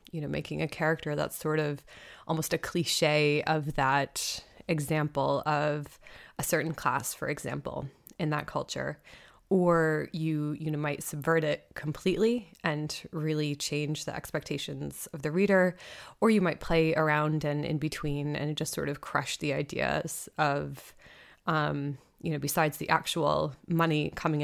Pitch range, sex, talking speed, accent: 145-170 Hz, female, 155 wpm, American